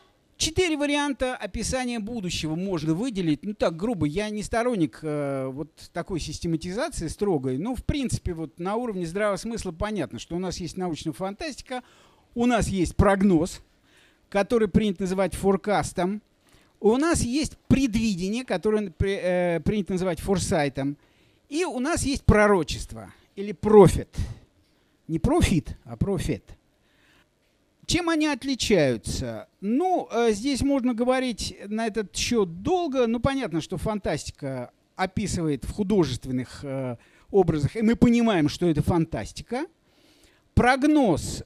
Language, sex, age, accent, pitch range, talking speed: Russian, male, 50-69, native, 170-235 Hz, 125 wpm